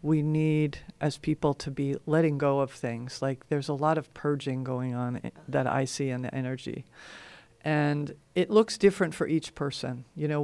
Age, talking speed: 50-69, 190 wpm